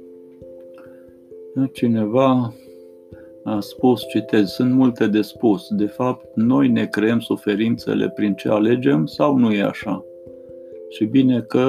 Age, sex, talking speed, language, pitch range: 50-69, male, 125 wpm, Romanian, 95-125 Hz